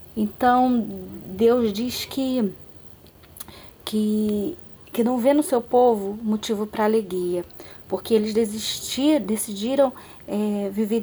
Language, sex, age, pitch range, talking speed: Portuguese, female, 20-39, 195-245 Hz, 90 wpm